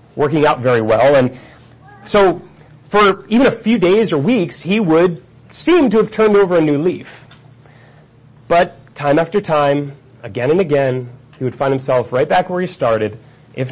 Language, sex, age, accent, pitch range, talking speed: English, male, 30-49, American, 125-170 Hz, 175 wpm